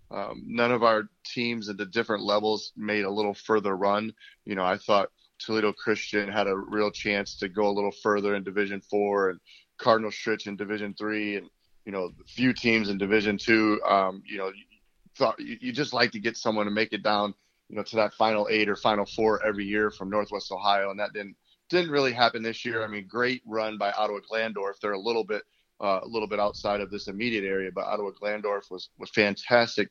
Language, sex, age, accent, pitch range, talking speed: English, male, 30-49, American, 100-115 Hz, 225 wpm